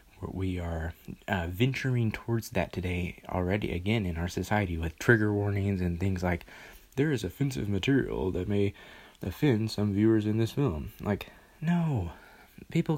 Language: English